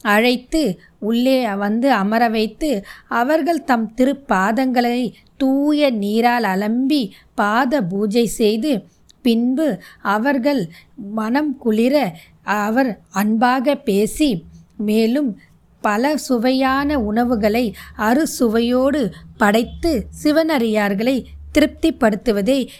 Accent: native